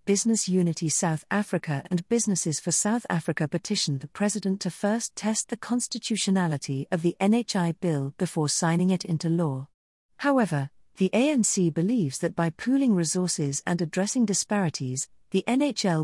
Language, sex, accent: English, female, British